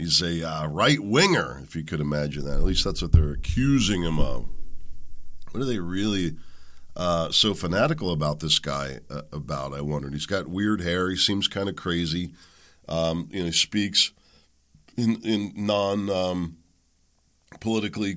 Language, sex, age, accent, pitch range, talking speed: English, male, 40-59, American, 75-105 Hz, 150 wpm